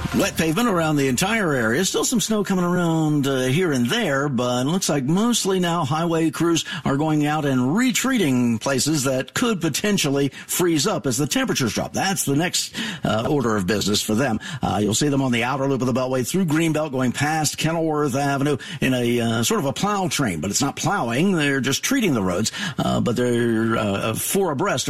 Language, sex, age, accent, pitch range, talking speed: English, male, 50-69, American, 120-160 Hz, 210 wpm